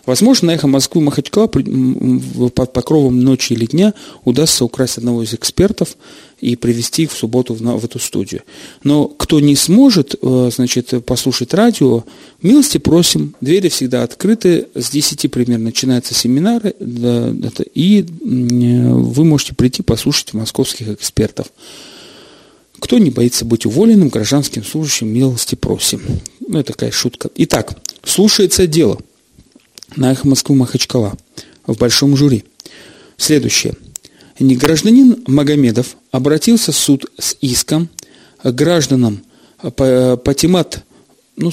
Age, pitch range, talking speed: 40-59, 125-160 Hz, 115 wpm